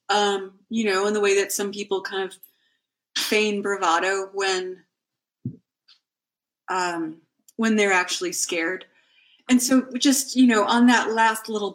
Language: English